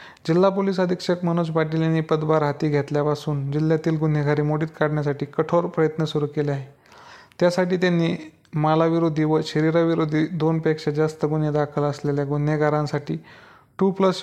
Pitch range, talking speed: 150-170 Hz, 135 wpm